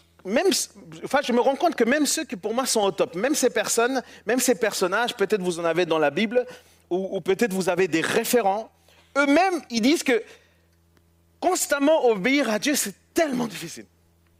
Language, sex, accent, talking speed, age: French, male, French, 190 wpm, 40-59